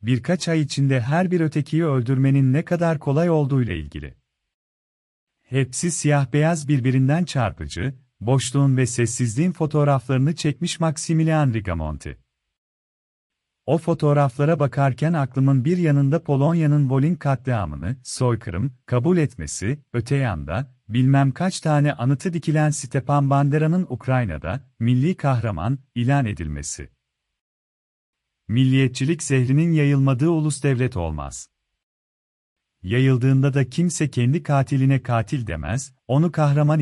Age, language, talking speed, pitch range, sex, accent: 40-59, Turkish, 105 wpm, 115-150 Hz, male, native